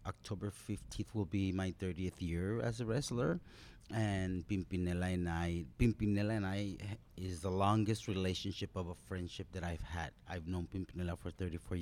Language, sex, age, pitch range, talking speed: French, male, 30-49, 85-100 Hz, 170 wpm